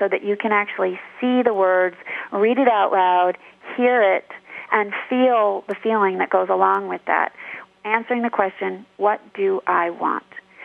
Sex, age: female, 30-49